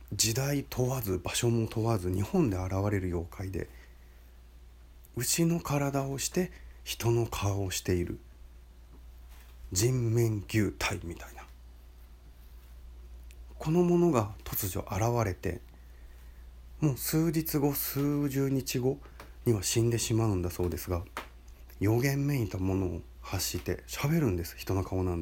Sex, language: male, Japanese